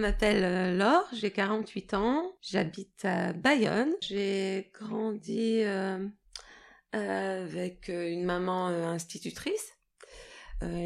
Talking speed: 100 wpm